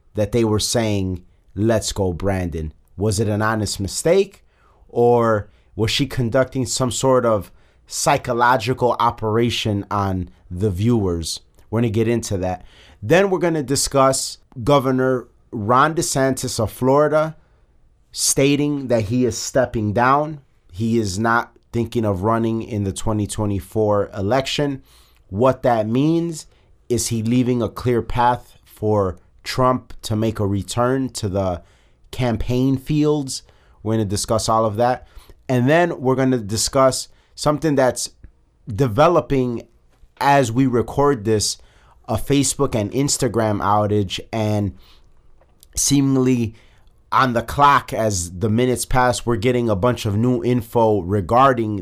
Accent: American